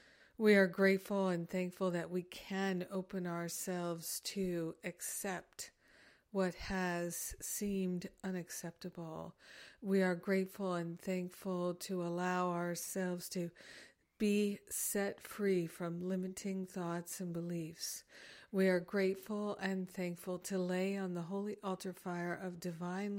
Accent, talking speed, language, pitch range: American, 120 wpm, English, 175-195 Hz